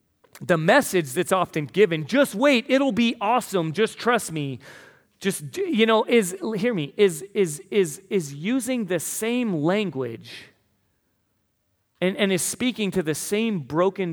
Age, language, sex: 30-49, English, male